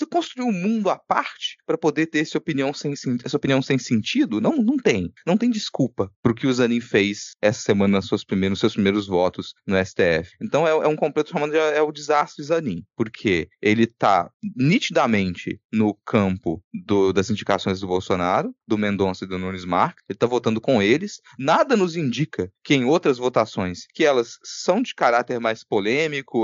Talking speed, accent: 195 wpm, Brazilian